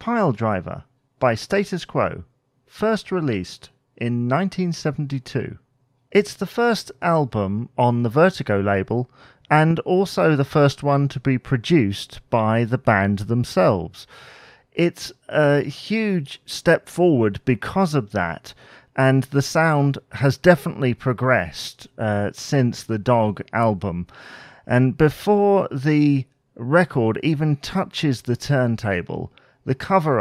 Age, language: 40-59, English